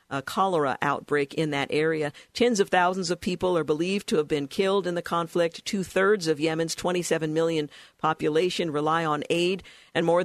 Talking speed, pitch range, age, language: 180 wpm, 155-180 Hz, 50-69, English